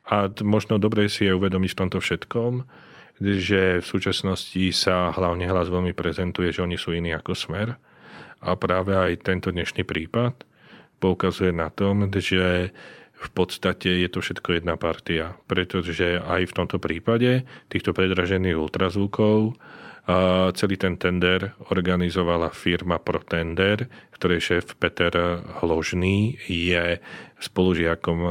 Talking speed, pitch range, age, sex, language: 130 wpm, 85-95 Hz, 40-59, male, Slovak